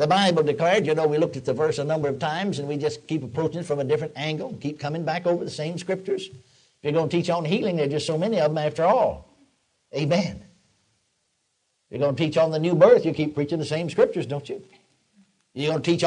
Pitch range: 150-205 Hz